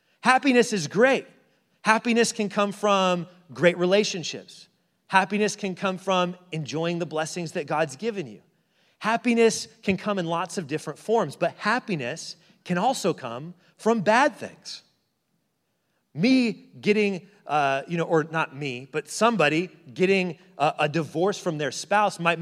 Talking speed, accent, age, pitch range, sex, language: 145 wpm, American, 30-49, 160-210 Hz, male, English